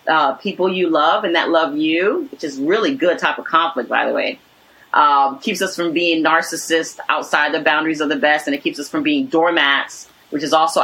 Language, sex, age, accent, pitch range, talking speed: English, female, 30-49, American, 165-215 Hz, 220 wpm